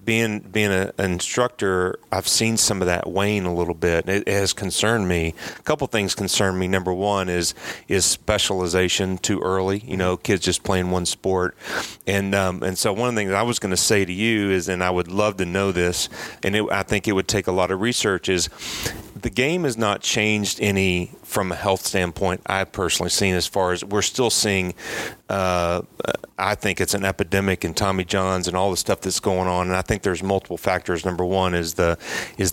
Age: 40-59